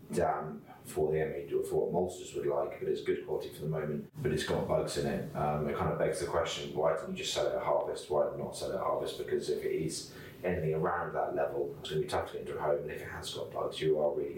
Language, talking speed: English, 290 wpm